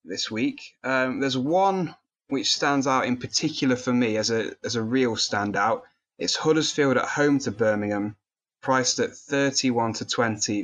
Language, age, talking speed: English, 20-39, 165 wpm